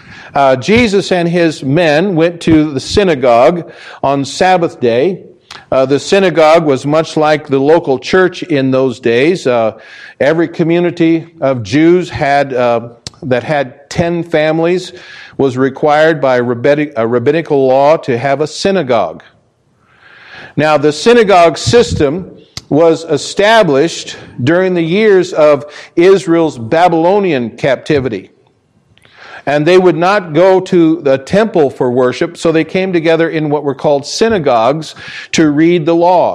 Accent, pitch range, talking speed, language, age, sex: American, 145-185 Hz, 135 wpm, English, 50-69, male